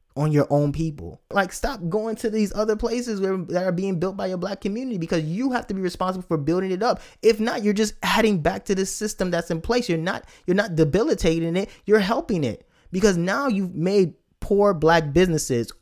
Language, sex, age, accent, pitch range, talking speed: English, male, 20-39, American, 120-175 Hz, 220 wpm